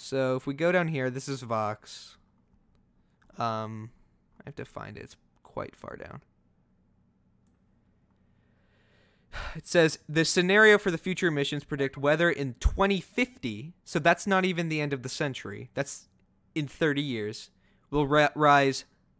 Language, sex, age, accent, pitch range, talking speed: English, male, 20-39, American, 115-145 Hz, 145 wpm